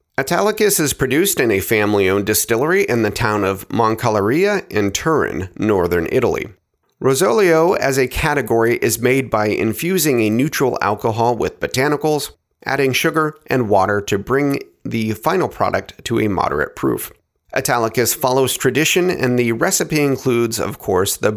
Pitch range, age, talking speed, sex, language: 105-150 Hz, 30-49, 145 wpm, male, English